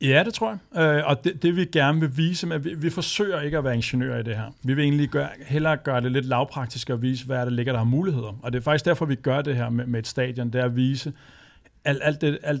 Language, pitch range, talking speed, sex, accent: Danish, 120-140 Hz, 280 wpm, male, native